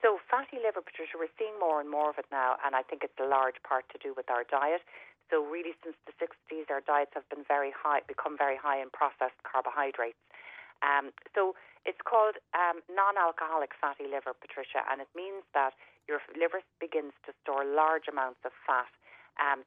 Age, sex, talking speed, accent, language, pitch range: 40-59, female, 195 wpm, Irish, English, 130-165 Hz